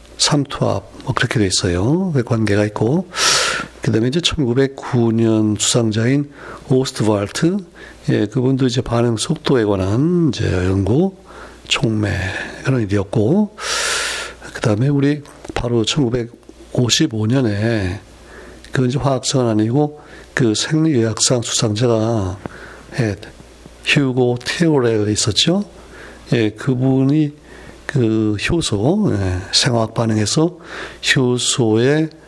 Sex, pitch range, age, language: male, 110-145 Hz, 60-79, Korean